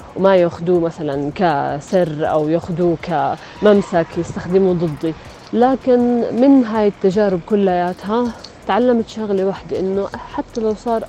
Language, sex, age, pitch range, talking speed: Arabic, female, 30-49, 170-205 Hz, 115 wpm